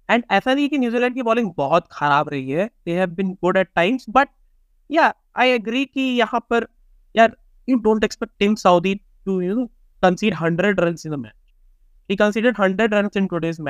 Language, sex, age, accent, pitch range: Hindi, male, 20-39, native, 160-225 Hz